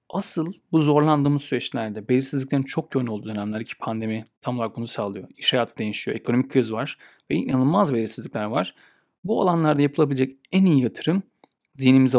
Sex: male